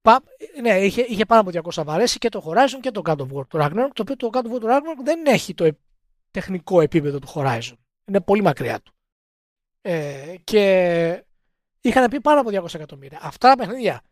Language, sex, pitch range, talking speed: Greek, male, 170-250 Hz, 190 wpm